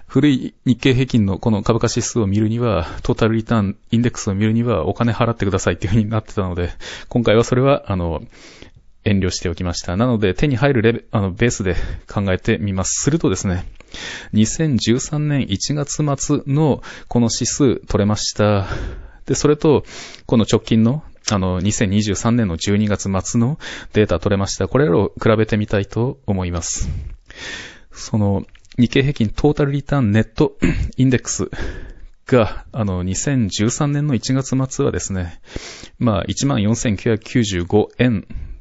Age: 20-39